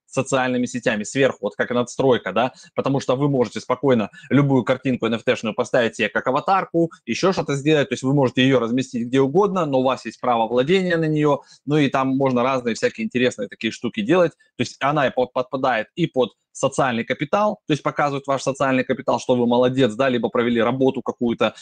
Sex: male